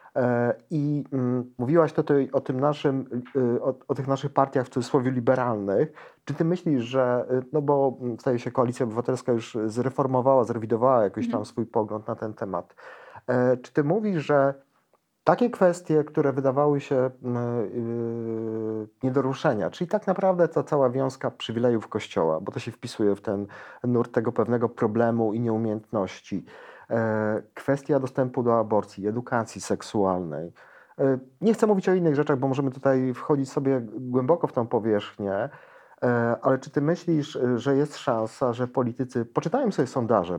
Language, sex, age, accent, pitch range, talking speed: Polish, male, 40-59, native, 115-140 Hz, 145 wpm